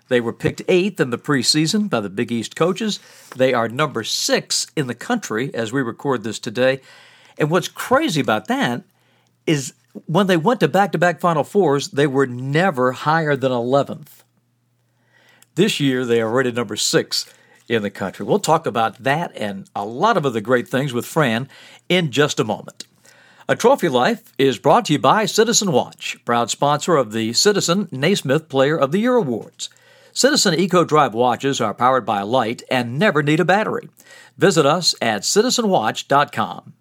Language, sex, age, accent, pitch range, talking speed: English, male, 60-79, American, 120-170 Hz, 175 wpm